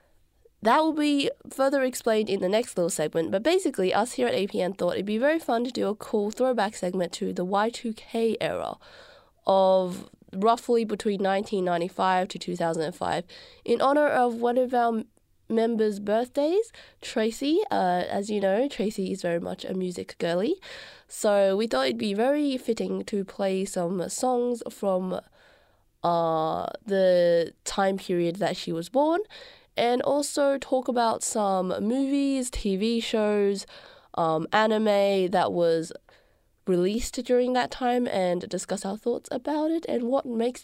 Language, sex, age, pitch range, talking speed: English, female, 20-39, 185-255 Hz, 150 wpm